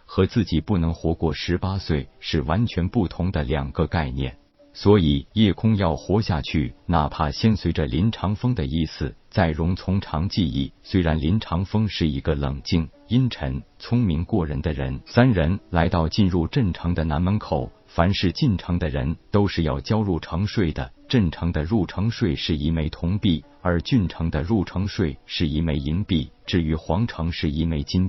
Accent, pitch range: native, 80-100 Hz